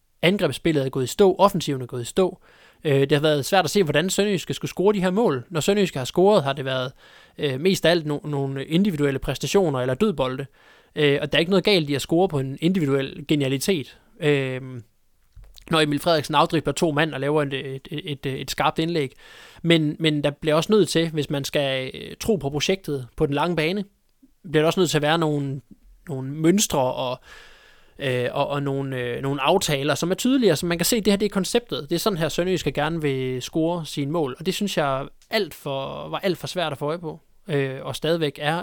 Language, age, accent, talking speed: Danish, 20-39, native, 215 wpm